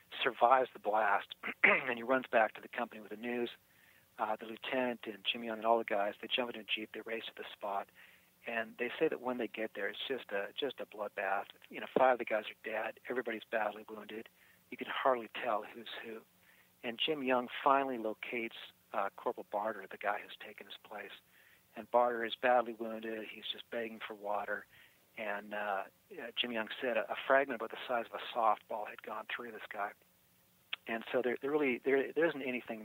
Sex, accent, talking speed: male, American, 215 wpm